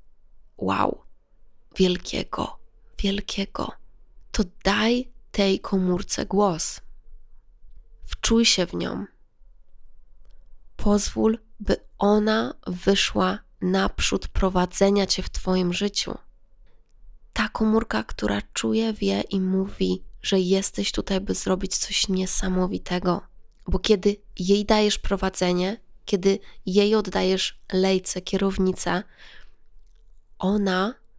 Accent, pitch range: native, 180-205 Hz